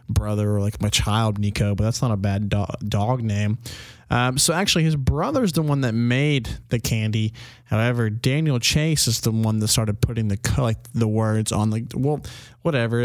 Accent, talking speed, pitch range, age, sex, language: American, 190 wpm, 115-140 Hz, 20-39, male, English